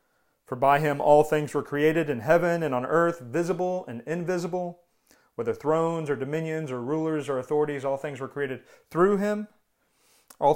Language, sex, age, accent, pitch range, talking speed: English, male, 40-59, American, 130-165 Hz, 170 wpm